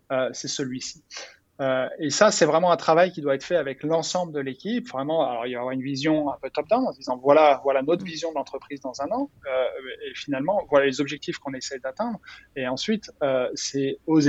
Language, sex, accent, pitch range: French, male, French, 130-165 Hz